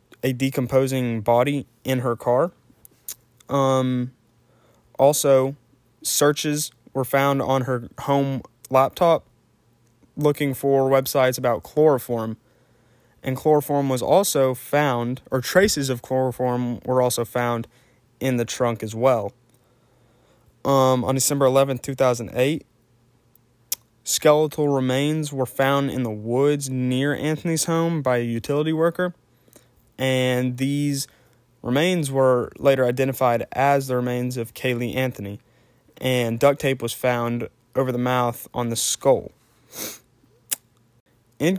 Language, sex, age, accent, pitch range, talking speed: English, male, 20-39, American, 120-135 Hz, 115 wpm